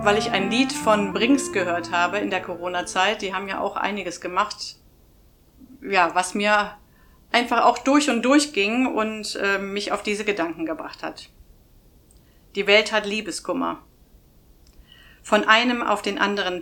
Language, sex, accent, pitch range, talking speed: German, female, German, 185-220 Hz, 155 wpm